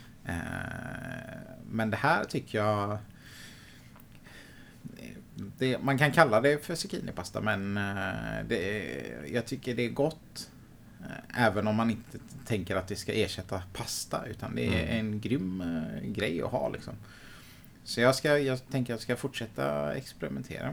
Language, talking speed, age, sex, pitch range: Swedish, 140 wpm, 30-49, male, 90-120 Hz